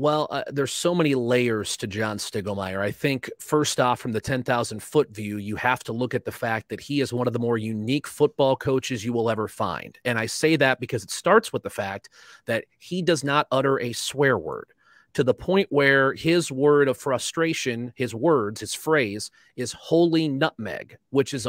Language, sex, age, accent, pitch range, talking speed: English, male, 30-49, American, 125-145 Hz, 205 wpm